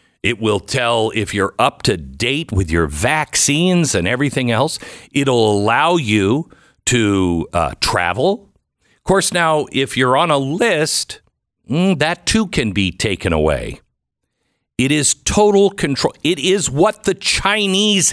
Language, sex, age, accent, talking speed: English, male, 50-69, American, 145 wpm